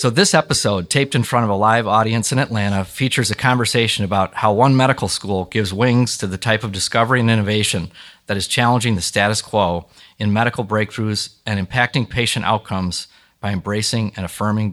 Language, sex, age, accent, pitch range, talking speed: English, male, 30-49, American, 100-120 Hz, 185 wpm